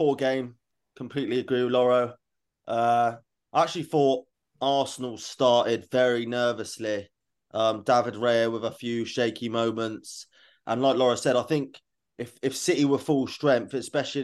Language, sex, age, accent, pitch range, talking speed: English, male, 20-39, British, 115-130 Hz, 145 wpm